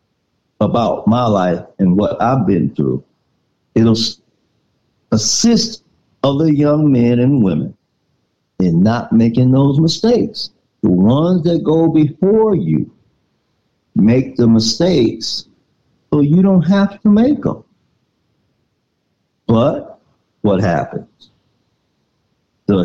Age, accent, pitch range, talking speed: 60-79, American, 115-175 Hz, 105 wpm